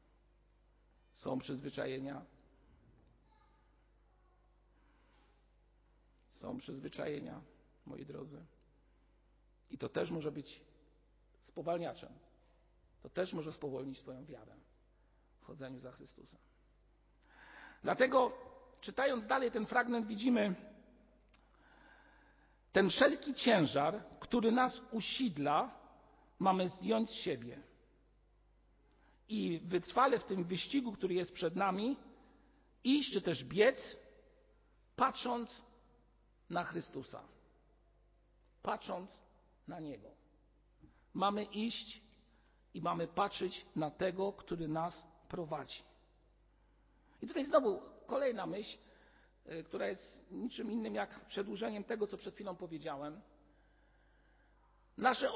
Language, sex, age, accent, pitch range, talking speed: Polish, male, 50-69, native, 170-250 Hz, 90 wpm